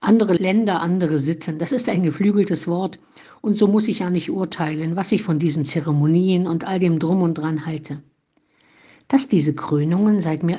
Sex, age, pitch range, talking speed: female, 50-69, 165-225 Hz, 185 wpm